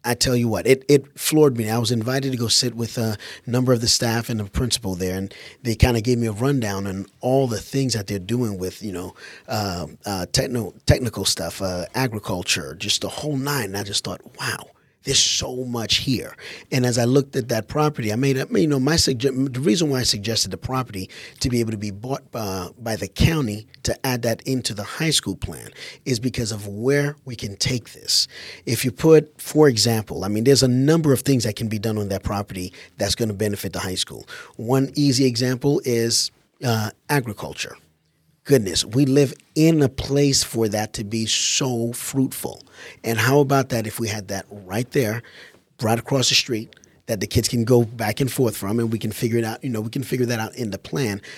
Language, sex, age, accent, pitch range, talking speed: English, male, 40-59, American, 105-135 Hz, 225 wpm